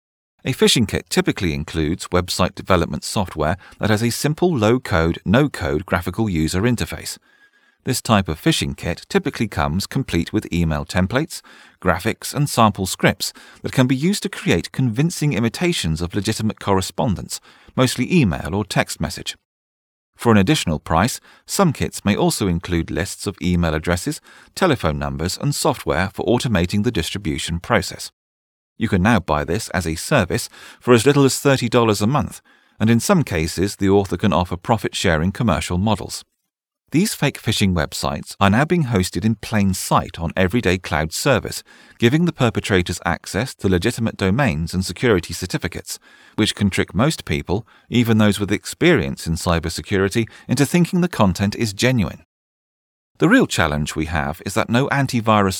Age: 40-59